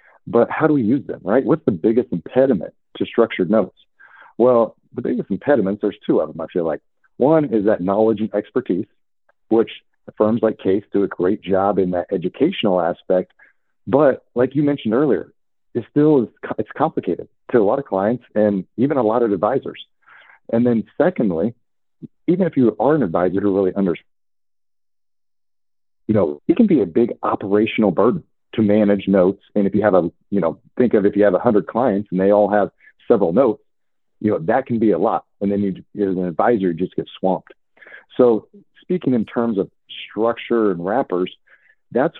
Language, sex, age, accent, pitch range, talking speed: English, male, 40-59, American, 100-120 Hz, 190 wpm